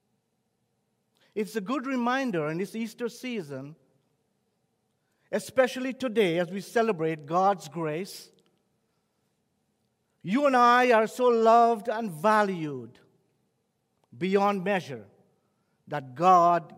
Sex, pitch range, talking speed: male, 145-245 Hz, 95 wpm